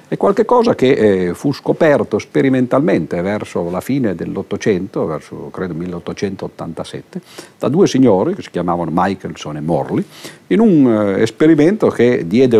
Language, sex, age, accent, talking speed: Italian, male, 50-69, native, 125 wpm